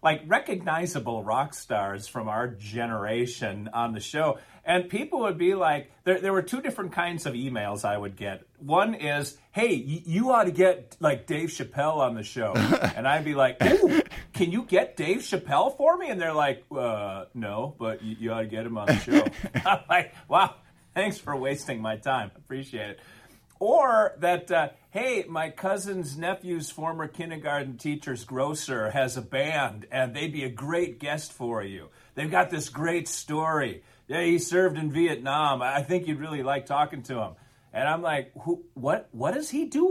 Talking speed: 190 wpm